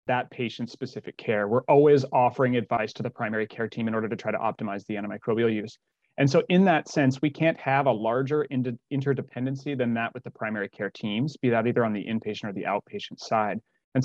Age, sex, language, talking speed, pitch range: 30-49, male, English, 215 wpm, 110-130 Hz